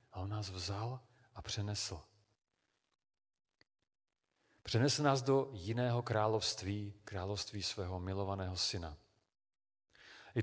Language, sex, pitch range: Czech, male, 100-130 Hz